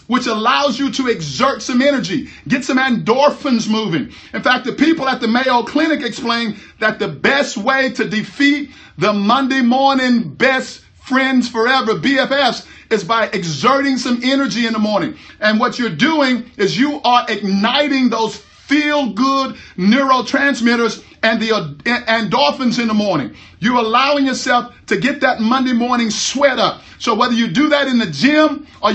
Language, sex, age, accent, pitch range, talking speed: English, male, 50-69, American, 230-275 Hz, 165 wpm